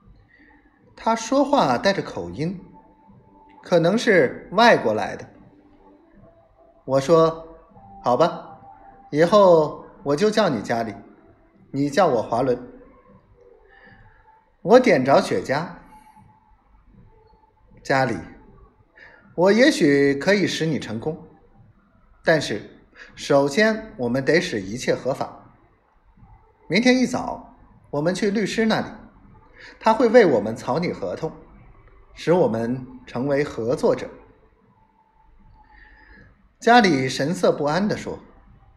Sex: male